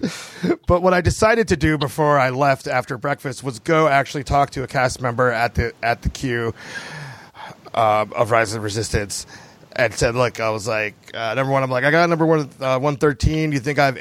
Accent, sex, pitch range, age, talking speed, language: American, male, 120-155 Hz, 30-49, 225 wpm, English